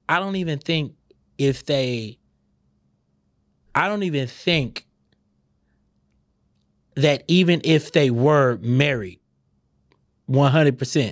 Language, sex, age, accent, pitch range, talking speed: English, male, 30-49, American, 105-160 Hz, 90 wpm